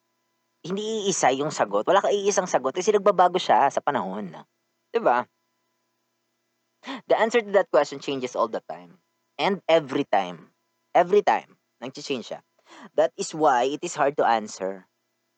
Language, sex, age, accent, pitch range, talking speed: Filipino, female, 20-39, native, 110-185 Hz, 150 wpm